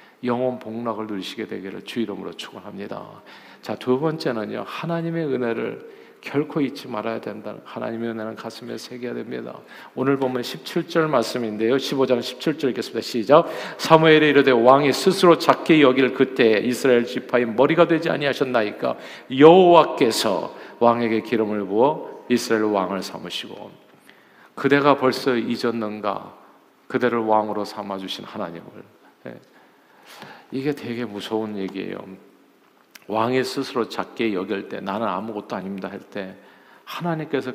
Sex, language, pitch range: male, Korean, 105-130 Hz